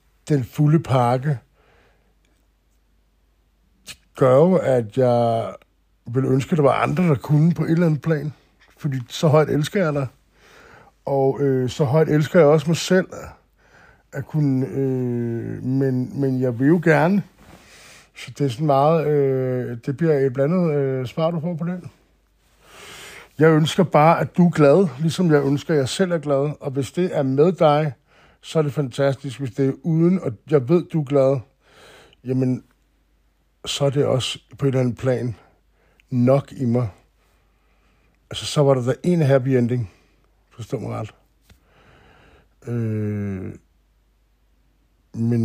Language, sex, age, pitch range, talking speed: Danish, male, 60-79, 120-155 Hz, 160 wpm